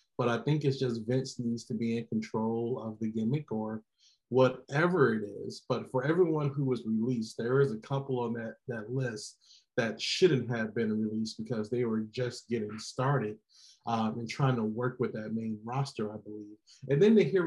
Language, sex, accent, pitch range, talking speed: English, male, American, 110-135 Hz, 200 wpm